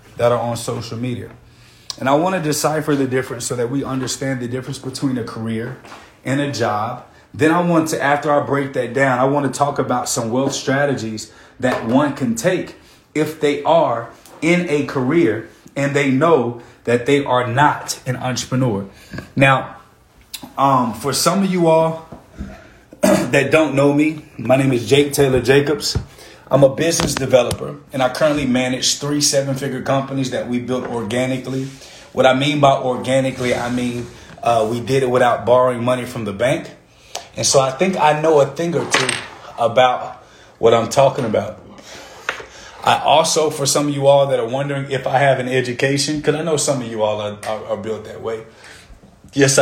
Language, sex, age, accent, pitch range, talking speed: English, male, 30-49, American, 125-145 Hz, 185 wpm